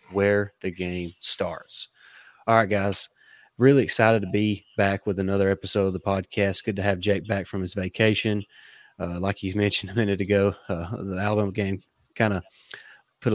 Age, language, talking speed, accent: 30-49, English, 180 wpm, American